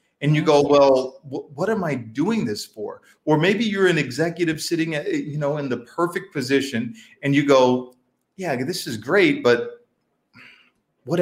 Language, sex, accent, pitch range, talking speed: English, male, American, 115-145 Hz, 170 wpm